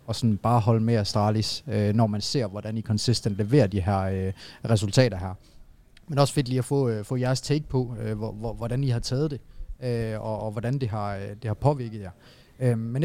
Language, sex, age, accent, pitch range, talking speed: Danish, male, 30-49, native, 115-145 Hz, 195 wpm